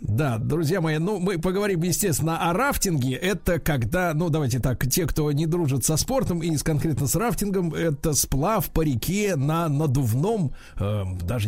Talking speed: 160 wpm